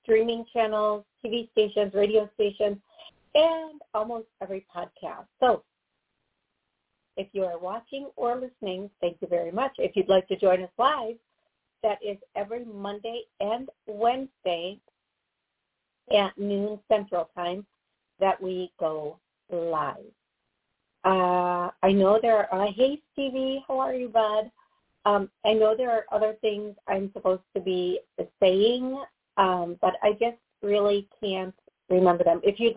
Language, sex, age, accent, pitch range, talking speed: English, female, 40-59, American, 180-225 Hz, 140 wpm